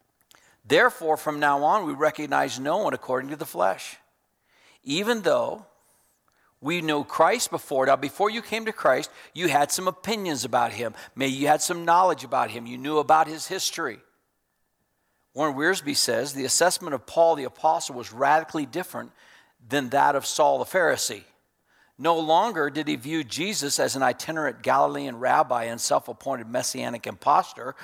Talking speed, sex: 160 wpm, male